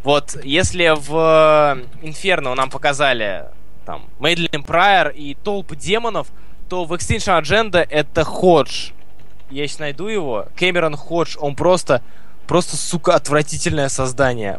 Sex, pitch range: male, 130-175 Hz